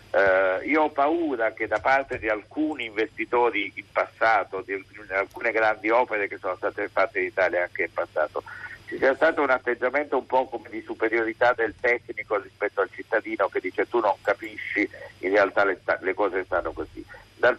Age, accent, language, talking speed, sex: 50-69, native, Italian, 185 wpm, male